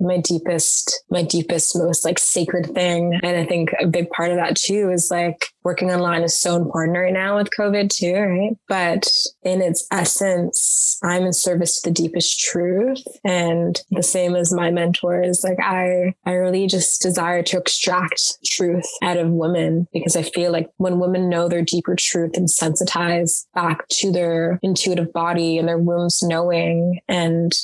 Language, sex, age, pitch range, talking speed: English, female, 20-39, 170-185 Hz, 175 wpm